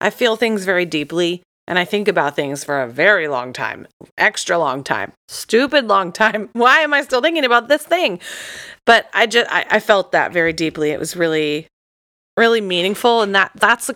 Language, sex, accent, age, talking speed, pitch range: English, female, American, 30-49, 200 wpm, 170-230 Hz